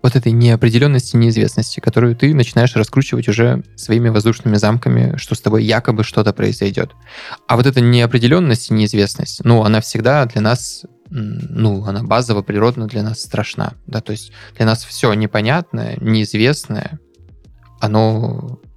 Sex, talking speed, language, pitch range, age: male, 145 wpm, Russian, 110-130 Hz, 20-39